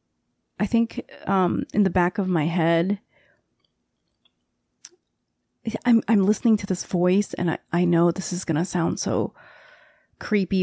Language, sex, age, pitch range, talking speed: English, female, 30-49, 170-205 Hz, 145 wpm